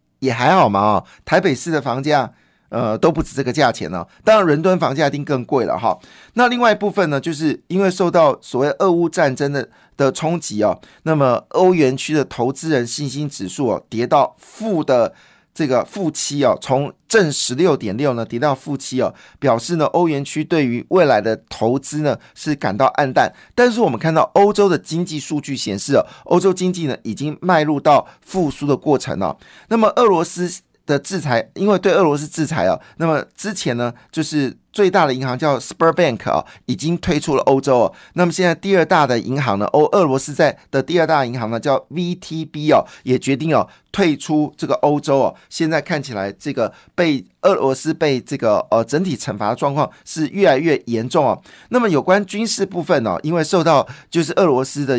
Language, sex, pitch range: Chinese, male, 130-170 Hz